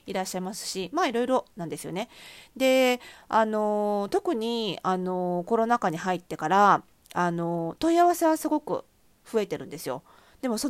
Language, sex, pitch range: Japanese, female, 175-250 Hz